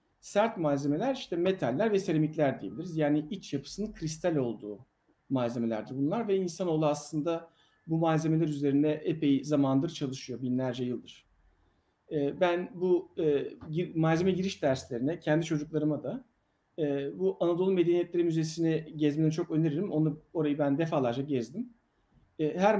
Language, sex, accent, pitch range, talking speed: Turkish, male, native, 145-175 Hz, 120 wpm